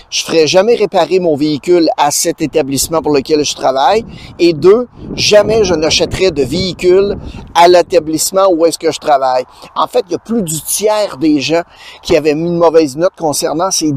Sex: male